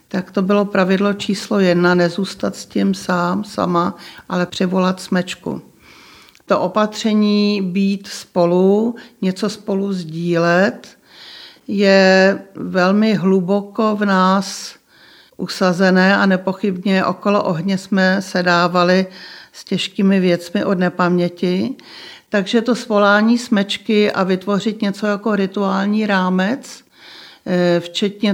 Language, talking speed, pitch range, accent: Czech, 105 wpm, 185-210 Hz, native